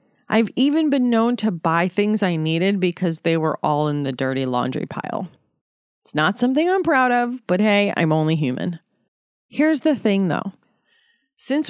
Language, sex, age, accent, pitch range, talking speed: English, female, 30-49, American, 165-240 Hz, 175 wpm